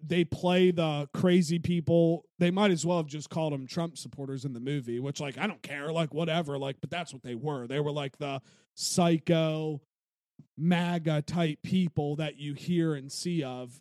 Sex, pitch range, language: male, 140-170 Hz, English